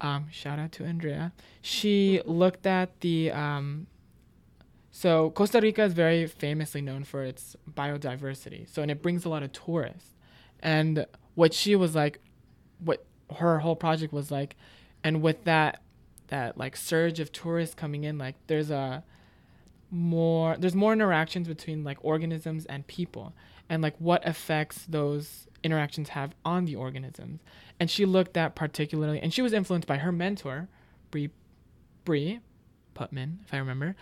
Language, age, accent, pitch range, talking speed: English, 20-39, American, 145-170 Hz, 155 wpm